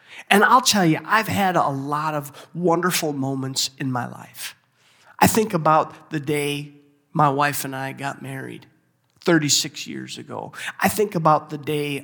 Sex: male